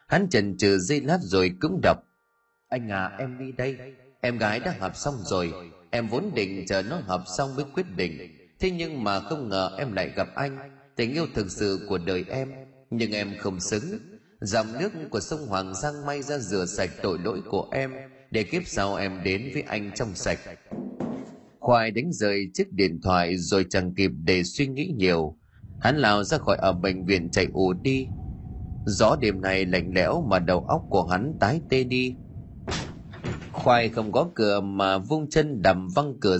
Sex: male